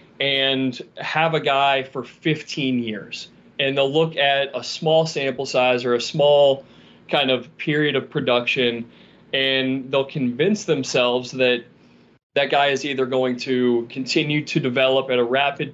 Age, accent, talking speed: 20-39, American, 155 wpm